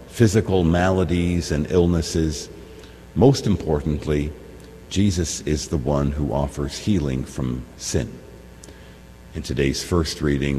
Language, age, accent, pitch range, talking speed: English, 50-69, American, 70-85 Hz, 110 wpm